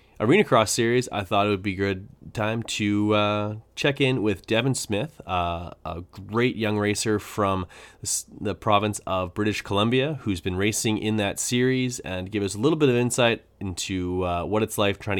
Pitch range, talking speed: 90-105 Hz, 195 wpm